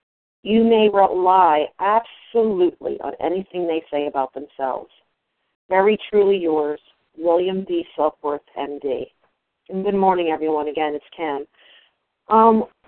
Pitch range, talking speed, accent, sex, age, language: 190-290 Hz, 115 wpm, American, female, 40-59, English